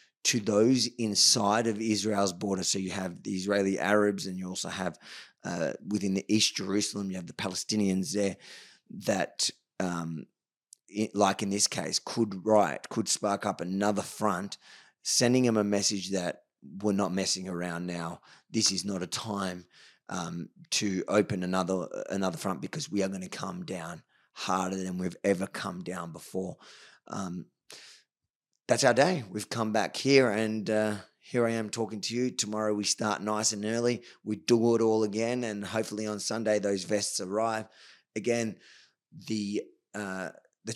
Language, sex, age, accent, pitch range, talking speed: English, male, 20-39, Australian, 95-110 Hz, 165 wpm